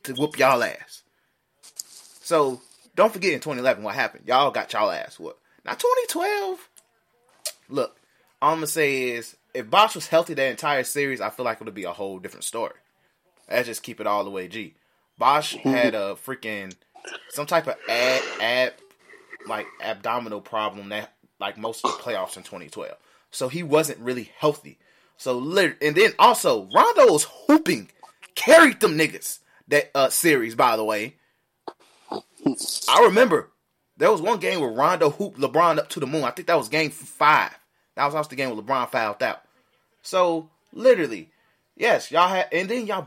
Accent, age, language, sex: American, 20-39, English, male